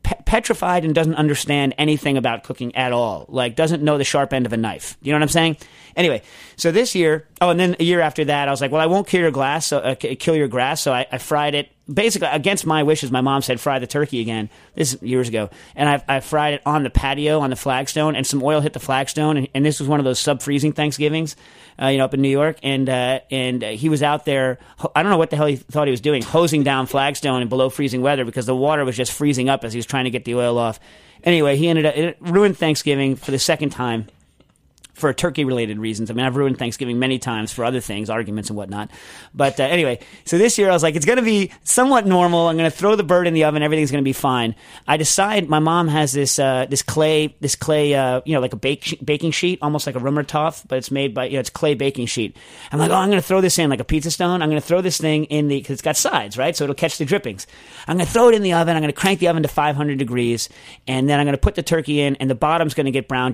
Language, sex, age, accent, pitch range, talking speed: English, male, 30-49, American, 130-160 Hz, 280 wpm